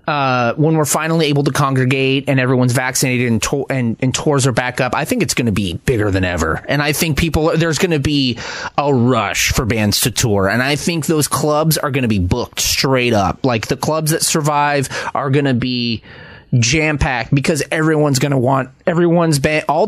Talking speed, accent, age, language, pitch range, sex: 220 wpm, American, 30-49, English, 115-145 Hz, male